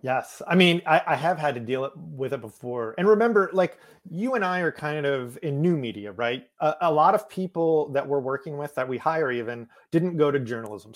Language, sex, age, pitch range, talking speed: English, male, 30-49, 130-170 Hz, 230 wpm